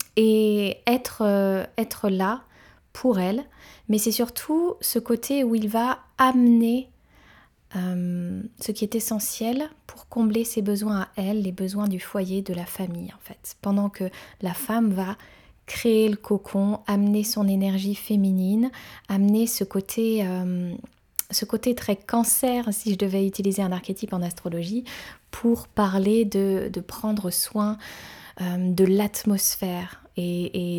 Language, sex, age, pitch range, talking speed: French, female, 20-39, 190-225 Hz, 145 wpm